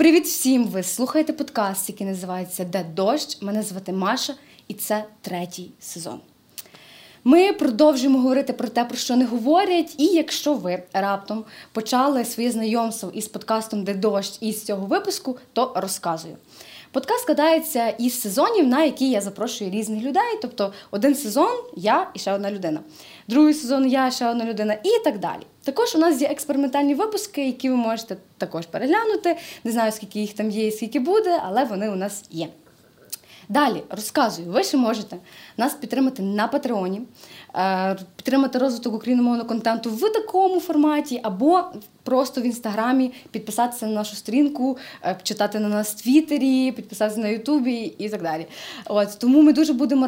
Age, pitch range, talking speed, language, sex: 20-39, 210-275 Hz, 160 wpm, Ukrainian, female